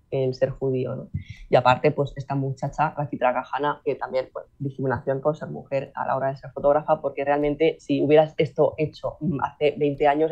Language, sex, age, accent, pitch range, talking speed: Spanish, female, 20-39, Spanish, 140-160 Hz, 200 wpm